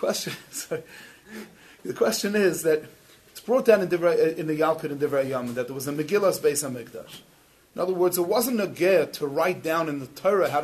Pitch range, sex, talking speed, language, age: 160-220 Hz, male, 220 wpm, English, 30-49